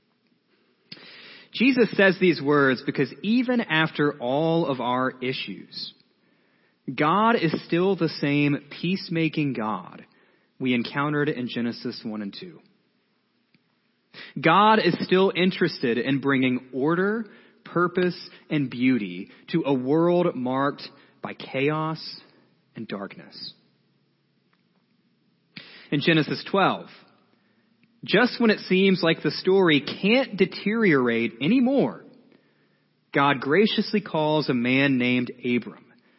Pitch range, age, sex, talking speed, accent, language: 130-195 Hz, 30-49, male, 105 wpm, American, English